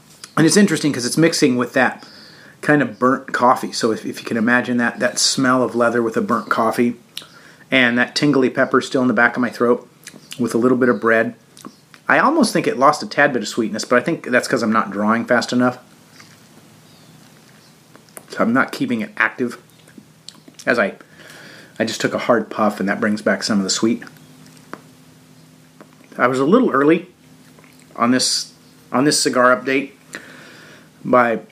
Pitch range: 110-135 Hz